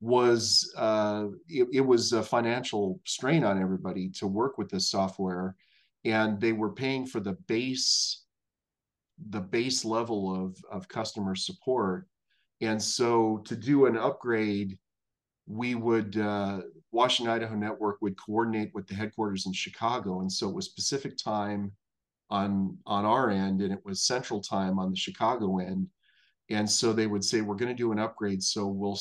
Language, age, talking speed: English, 40-59, 165 wpm